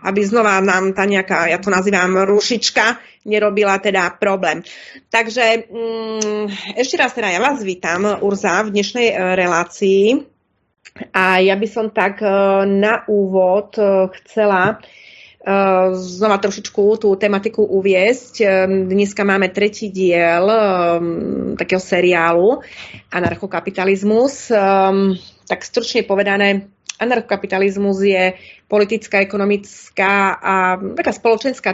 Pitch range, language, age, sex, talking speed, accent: 195-220 Hz, Czech, 30-49, female, 100 wpm, native